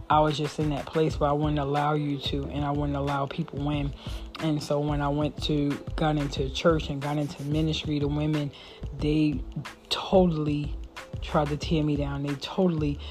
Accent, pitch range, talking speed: American, 145-155 Hz, 190 wpm